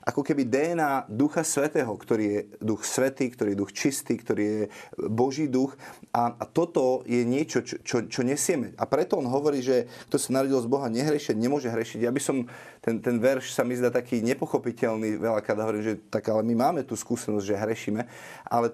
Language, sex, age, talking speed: Slovak, male, 30-49, 200 wpm